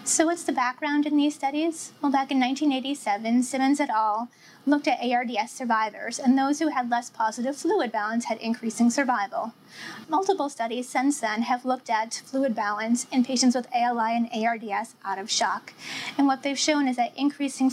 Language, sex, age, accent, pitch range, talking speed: English, female, 20-39, American, 225-270 Hz, 185 wpm